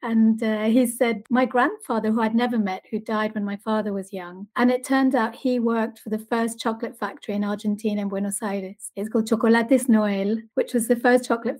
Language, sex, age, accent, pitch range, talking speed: English, female, 40-59, British, 215-250 Hz, 215 wpm